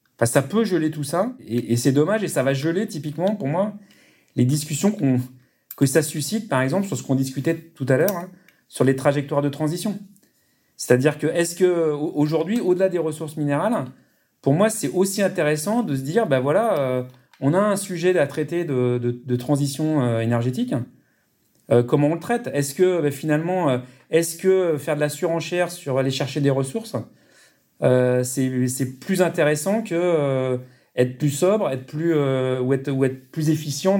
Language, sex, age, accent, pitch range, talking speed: French, male, 40-59, French, 130-175 Hz, 185 wpm